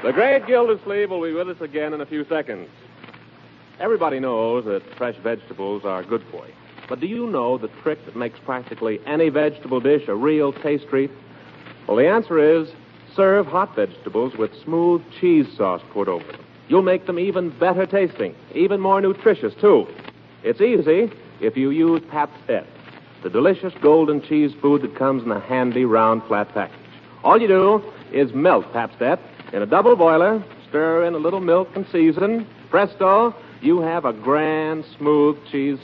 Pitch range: 140-190 Hz